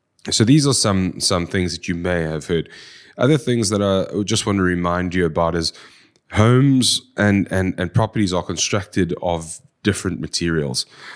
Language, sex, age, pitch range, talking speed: English, male, 30-49, 85-105 Hz, 170 wpm